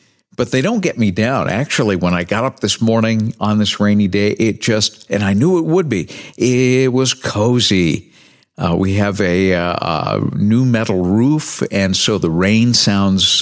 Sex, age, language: male, 50-69, English